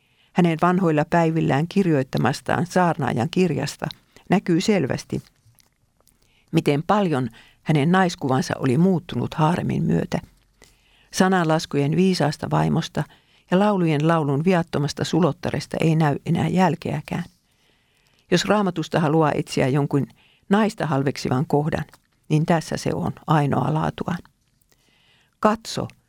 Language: Finnish